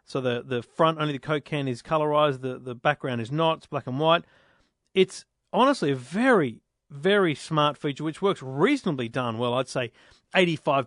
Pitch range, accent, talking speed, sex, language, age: 125-160 Hz, Australian, 190 wpm, male, English, 40-59